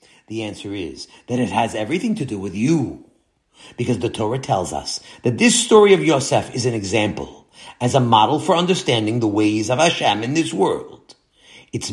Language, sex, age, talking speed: English, male, 50-69, 185 wpm